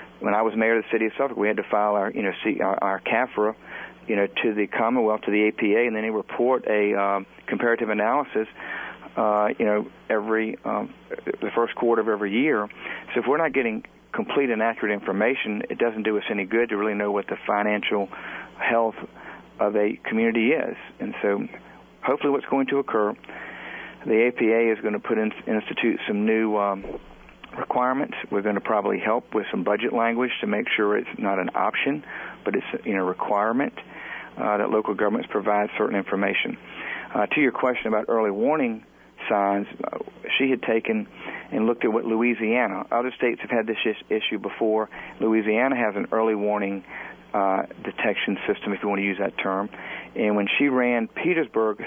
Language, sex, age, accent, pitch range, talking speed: English, male, 50-69, American, 105-115 Hz, 190 wpm